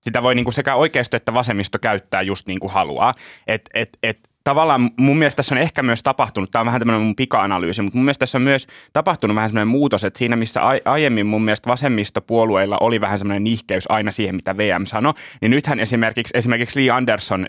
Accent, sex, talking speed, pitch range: native, male, 210 wpm, 105-130 Hz